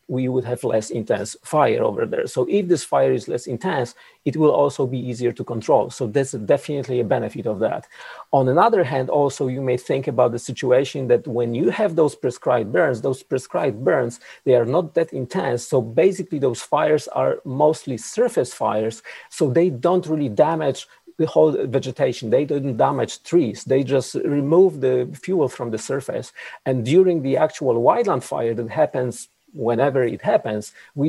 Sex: male